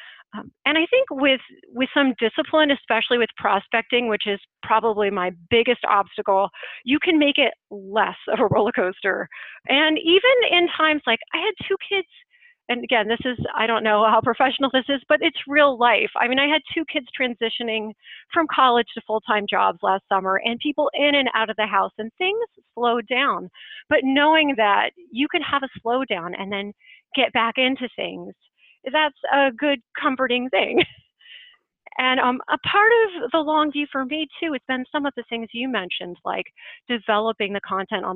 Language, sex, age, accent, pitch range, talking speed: English, female, 30-49, American, 220-295 Hz, 185 wpm